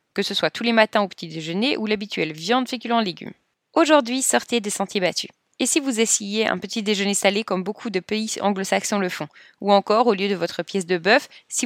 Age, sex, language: 20-39, female, French